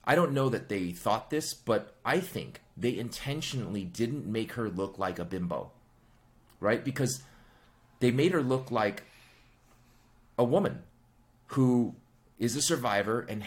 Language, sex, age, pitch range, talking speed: English, male, 30-49, 105-125 Hz, 145 wpm